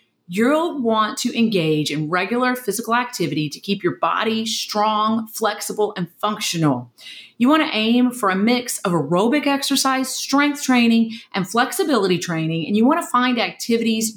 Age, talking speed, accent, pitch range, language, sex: 40-59, 150 wpm, American, 175-250 Hz, English, female